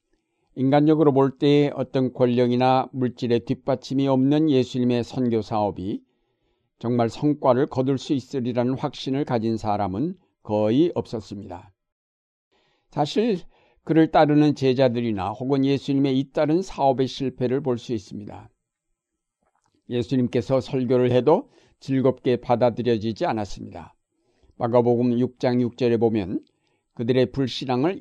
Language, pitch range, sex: Korean, 115-140 Hz, male